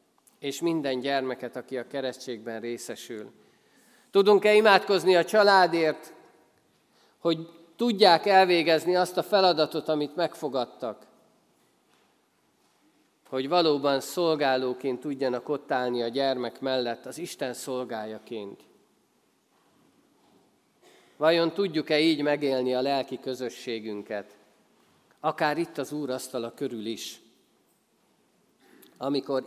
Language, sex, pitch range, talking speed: Hungarian, male, 130-170 Hz, 95 wpm